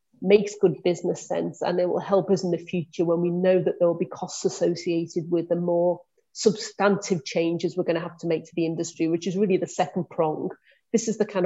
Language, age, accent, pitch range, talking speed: English, 40-59, British, 170-195 Hz, 235 wpm